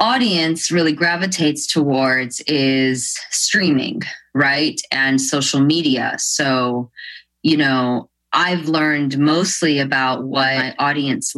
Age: 20-39